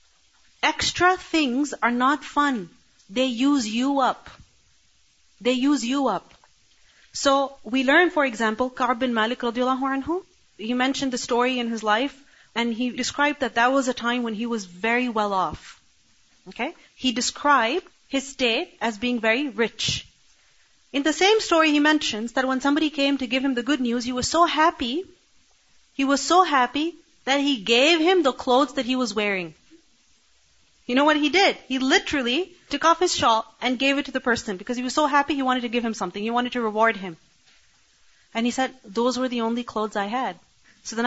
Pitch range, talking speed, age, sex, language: 230-285 Hz, 195 wpm, 30-49, female, English